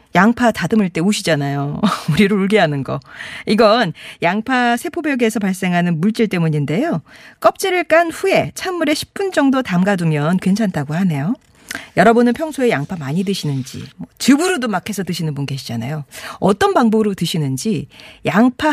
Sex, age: female, 40-59